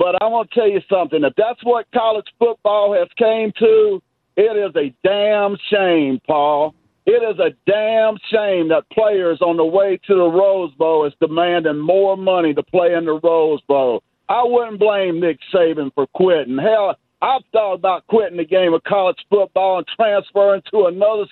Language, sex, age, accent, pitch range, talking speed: English, male, 50-69, American, 180-225 Hz, 185 wpm